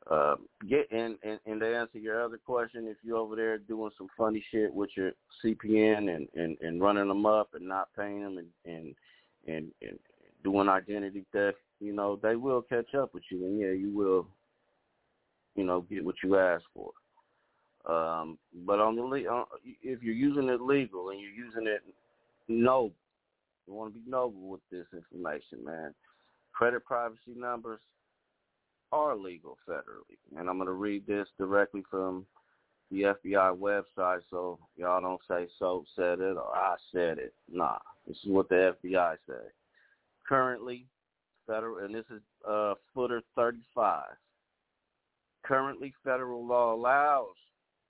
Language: English